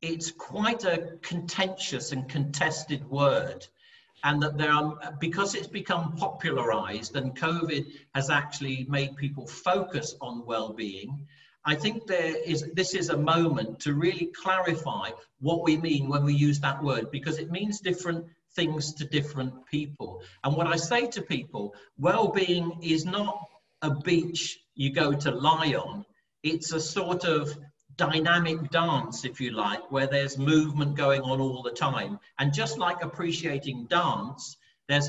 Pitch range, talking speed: 140-170 Hz, 155 wpm